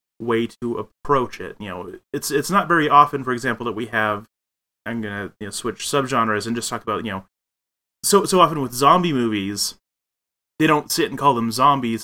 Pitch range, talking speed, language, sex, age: 110-135 Hz, 205 wpm, English, male, 30-49